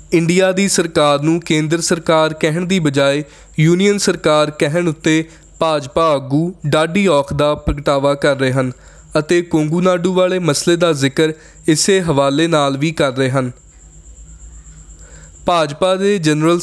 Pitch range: 145-175 Hz